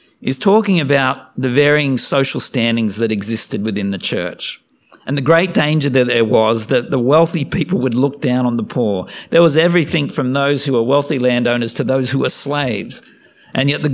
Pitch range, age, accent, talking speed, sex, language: 125-155 Hz, 50-69, Australian, 200 wpm, male, English